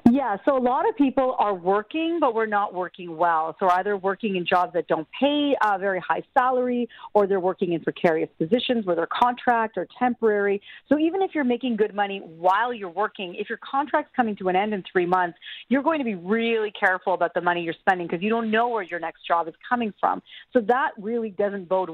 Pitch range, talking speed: 185-230 Hz, 225 wpm